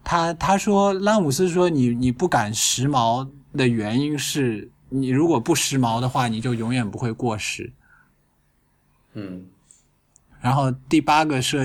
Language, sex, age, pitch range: Chinese, male, 20-39, 110-140 Hz